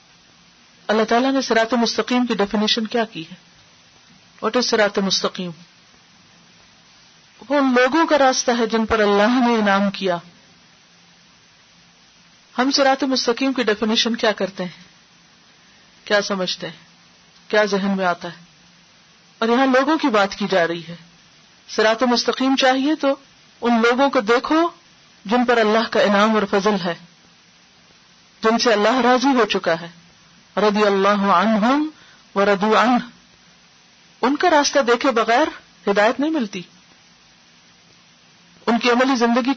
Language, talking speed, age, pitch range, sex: Urdu, 140 wpm, 40-59, 195-250 Hz, female